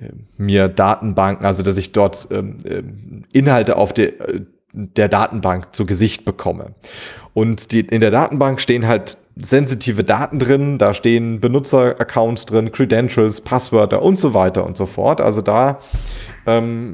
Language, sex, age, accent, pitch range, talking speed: English, male, 30-49, German, 100-125 Hz, 135 wpm